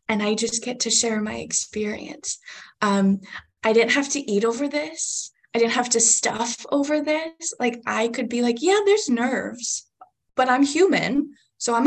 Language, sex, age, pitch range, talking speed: English, female, 10-29, 200-260 Hz, 180 wpm